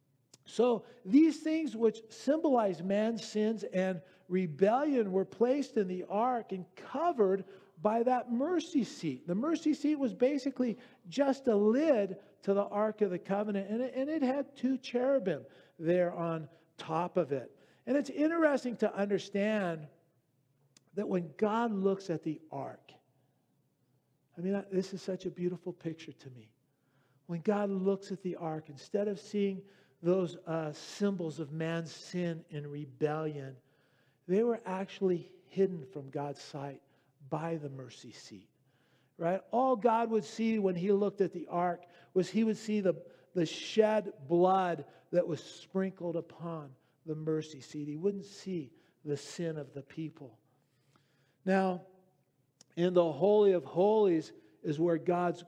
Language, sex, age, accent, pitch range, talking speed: English, male, 50-69, American, 155-210 Hz, 150 wpm